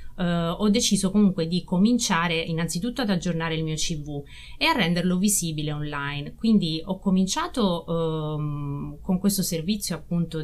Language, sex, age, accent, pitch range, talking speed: Italian, female, 30-49, native, 160-195 Hz, 130 wpm